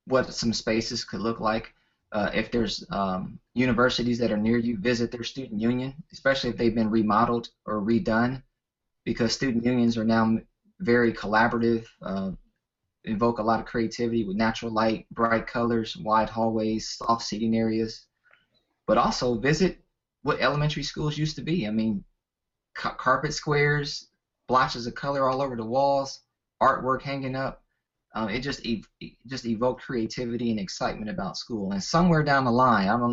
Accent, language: American, English